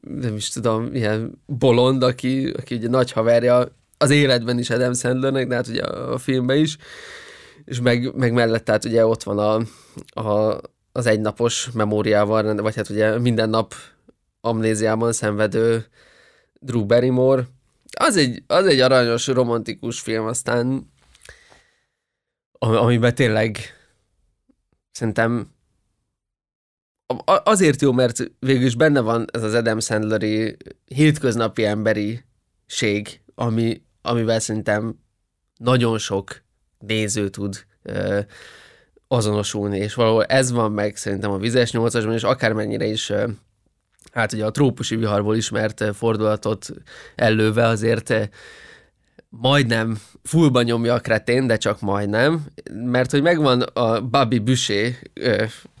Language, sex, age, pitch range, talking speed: Hungarian, male, 20-39, 110-125 Hz, 125 wpm